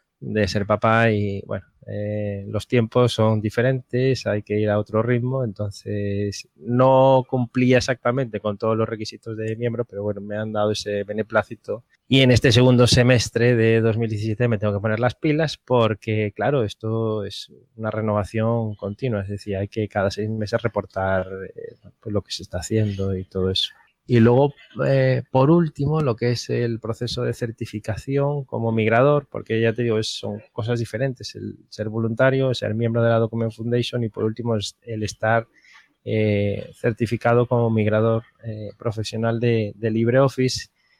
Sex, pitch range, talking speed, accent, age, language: male, 105-125 Hz, 170 wpm, Spanish, 20-39, Spanish